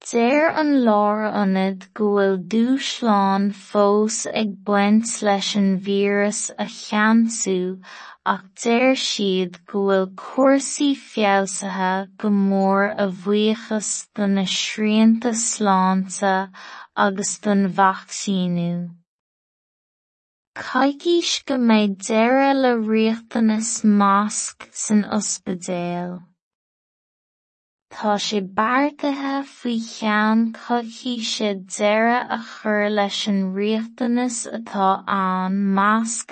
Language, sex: English, female